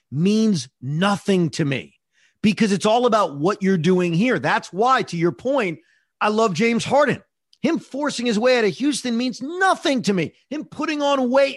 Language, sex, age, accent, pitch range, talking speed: English, male, 40-59, American, 185-290 Hz, 185 wpm